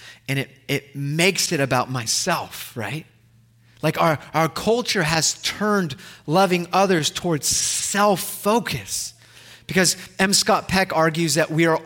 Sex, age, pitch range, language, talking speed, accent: male, 30-49, 125-190 Hz, English, 130 wpm, American